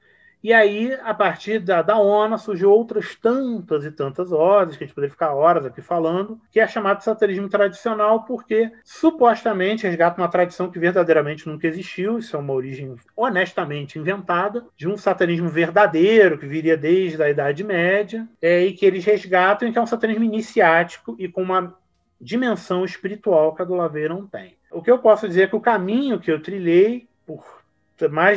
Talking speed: 180 wpm